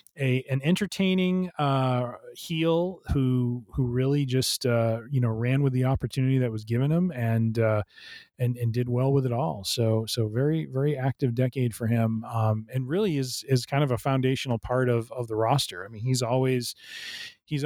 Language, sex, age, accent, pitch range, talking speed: English, male, 30-49, American, 115-135 Hz, 190 wpm